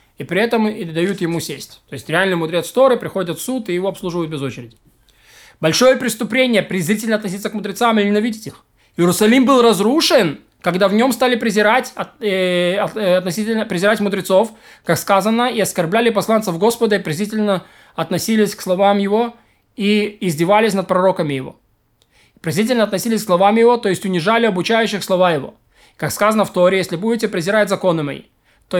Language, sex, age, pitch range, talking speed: Russian, male, 20-39, 180-220 Hz, 160 wpm